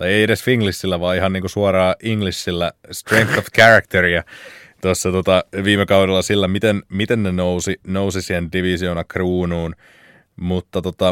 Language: Finnish